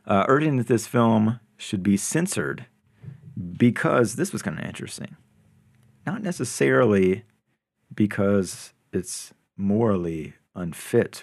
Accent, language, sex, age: American, English, male, 40-59